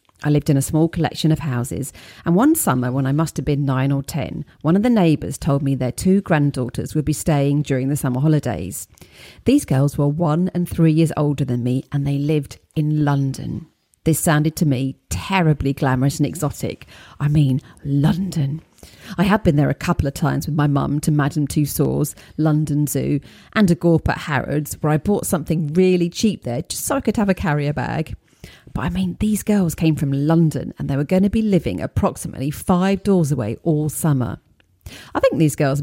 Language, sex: English, female